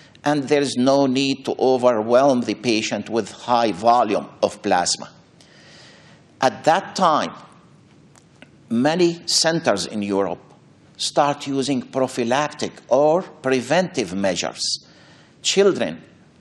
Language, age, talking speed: English, 60-79, 100 wpm